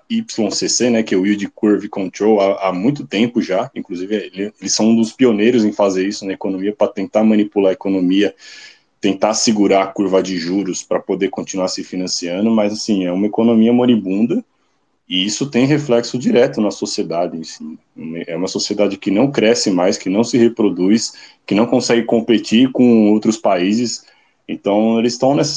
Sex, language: male, Portuguese